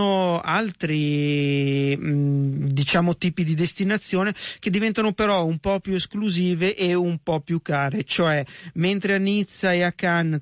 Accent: native